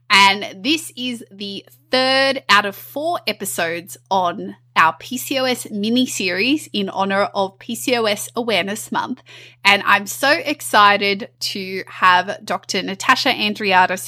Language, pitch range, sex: English, 190-240 Hz, female